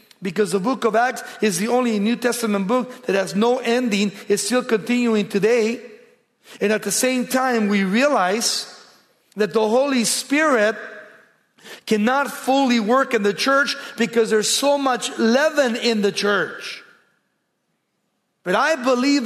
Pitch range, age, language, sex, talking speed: 190-230 Hz, 50-69, English, male, 145 wpm